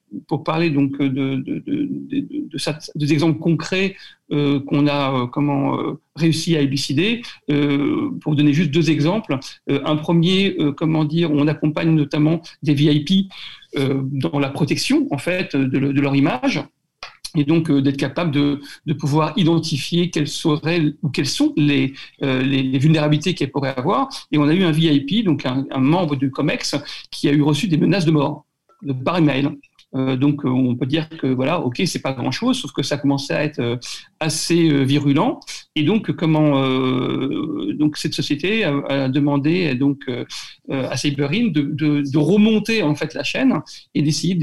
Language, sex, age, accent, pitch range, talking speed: French, male, 50-69, French, 140-165 Hz, 190 wpm